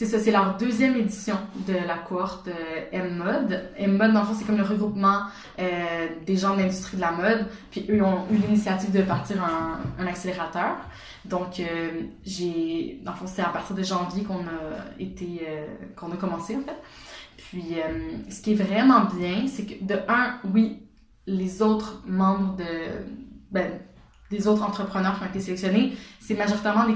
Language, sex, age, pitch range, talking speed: French, female, 20-39, 185-220 Hz, 190 wpm